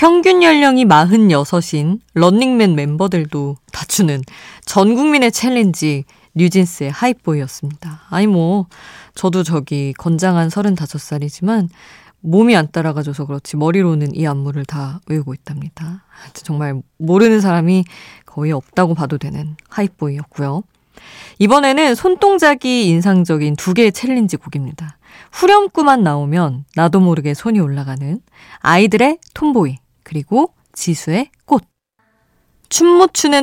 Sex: female